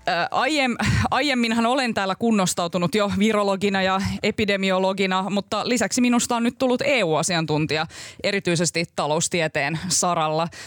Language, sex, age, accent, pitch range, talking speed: Finnish, female, 20-39, native, 165-220 Hz, 100 wpm